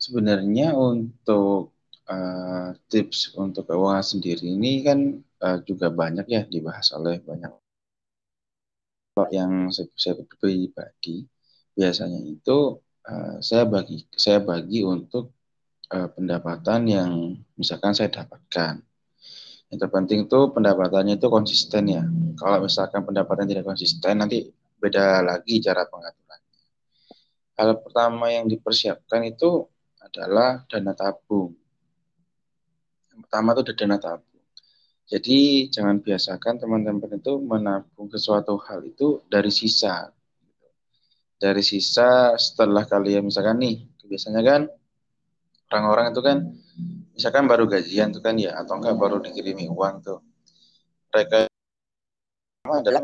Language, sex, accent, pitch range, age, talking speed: Indonesian, male, native, 95-120 Hz, 20-39, 115 wpm